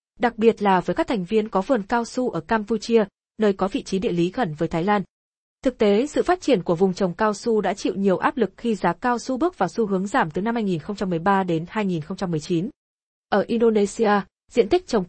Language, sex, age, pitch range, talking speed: Vietnamese, female, 20-39, 190-235 Hz, 225 wpm